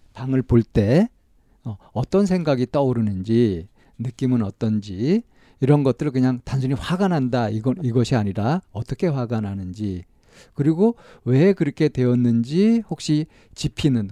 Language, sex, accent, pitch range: Korean, male, native, 115-155 Hz